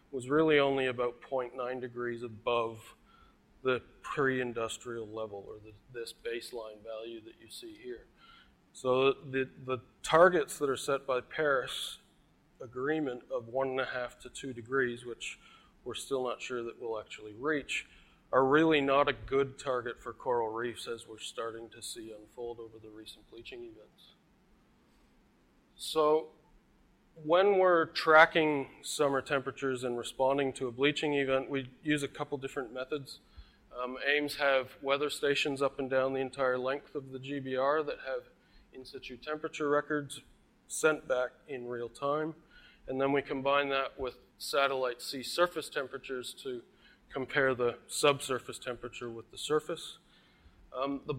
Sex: male